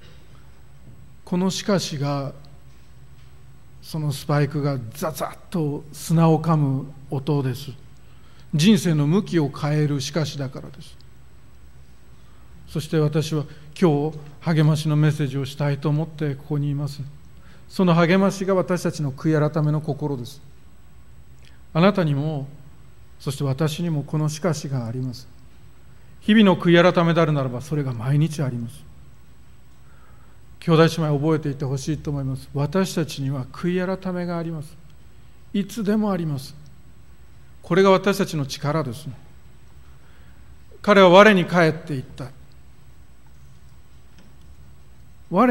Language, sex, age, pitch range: Japanese, male, 40-59, 135-180 Hz